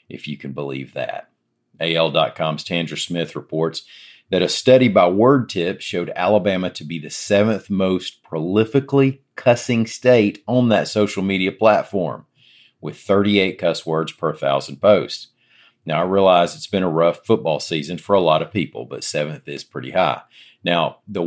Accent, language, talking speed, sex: American, English, 160 wpm, male